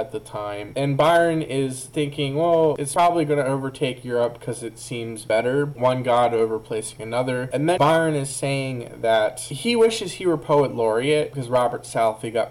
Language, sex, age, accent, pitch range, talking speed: English, male, 20-39, American, 115-145 Hz, 180 wpm